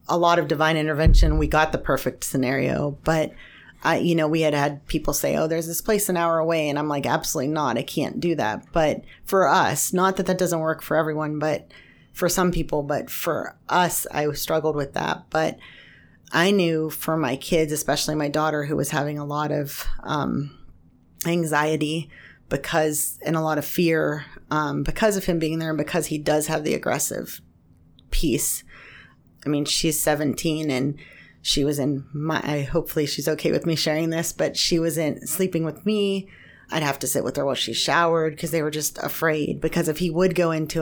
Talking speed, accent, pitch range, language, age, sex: 200 wpm, American, 145-165 Hz, English, 30-49, female